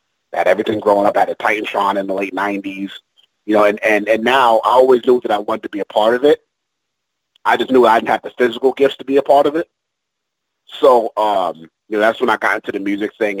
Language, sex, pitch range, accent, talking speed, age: English, male, 100-130 Hz, American, 255 wpm, 30-49